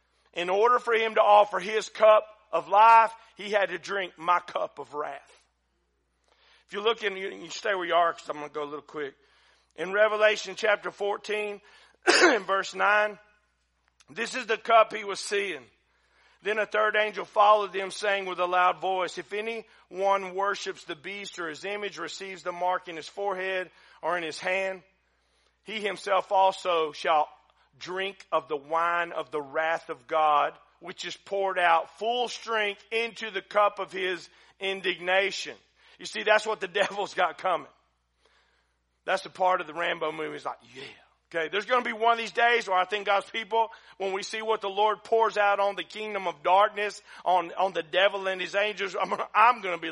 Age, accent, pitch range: 40-59, American, 170-215 Hz